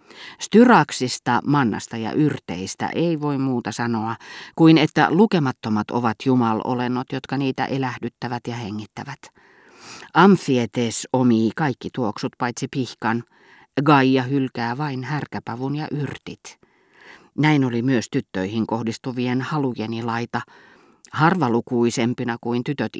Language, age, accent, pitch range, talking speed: Finnish, 40-59, native, 115-140 Hz, 105 wpm